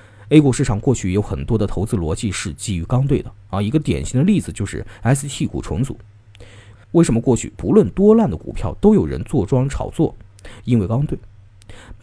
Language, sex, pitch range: Chinese, male, 100-140 Hz